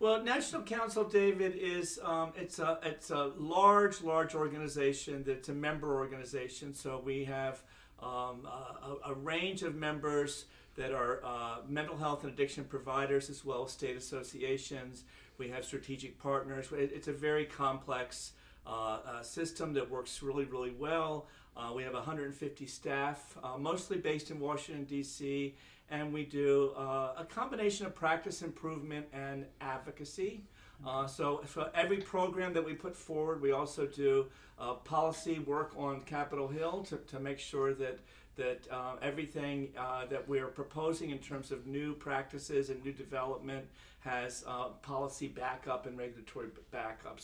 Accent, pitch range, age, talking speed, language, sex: American, 130-155 Hz, 50-69, 155 wpm, English, male